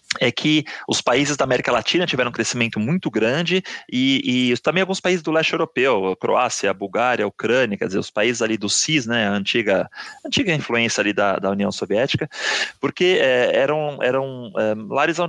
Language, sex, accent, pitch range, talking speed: Portuguese, male, Brazilian, 115-165 Hz, 195 wpm